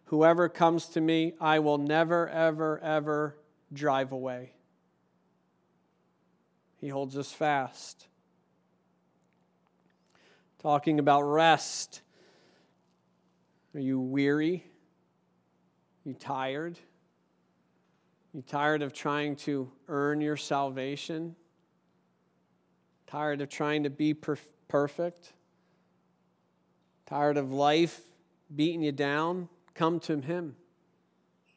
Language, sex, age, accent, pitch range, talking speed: English, male, 40-59, American, 135-165 Hz, 95 wpm